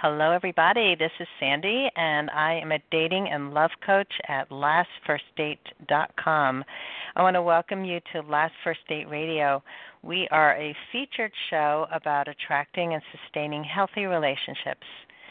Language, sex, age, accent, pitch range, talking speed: English, female, 50-69, American, 150-185 Hz, 140 wpm